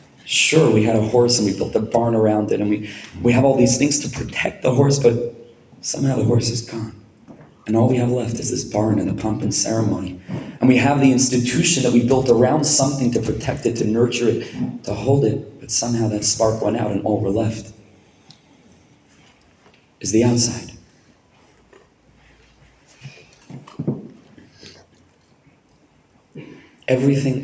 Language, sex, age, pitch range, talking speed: English, male, 30-49, 105-130 Hz, 165 wpm